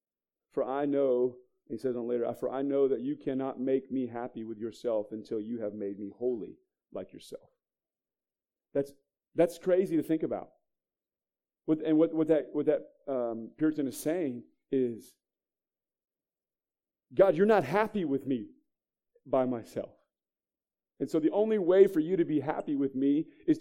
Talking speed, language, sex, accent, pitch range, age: 165 wpm, English, male, American, 115-150 Hz, 40-59